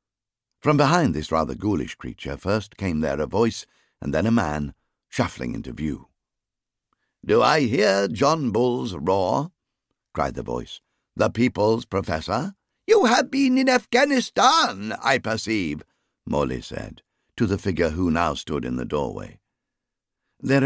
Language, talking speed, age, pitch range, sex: English, 140 wpm, 60-79, 80-120 Hz, male